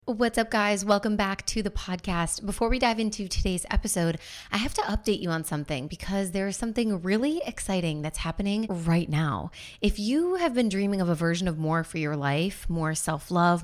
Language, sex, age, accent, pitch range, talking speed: English, female, 20-39, American, 160-205 Hz, 200 wpm